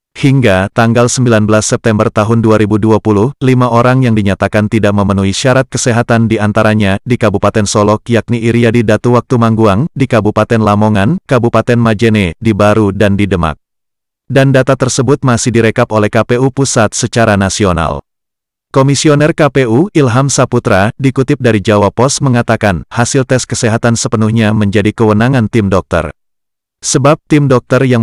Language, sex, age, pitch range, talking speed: Indonesian, male, 30-49, 105-125 Hz, 140 wpm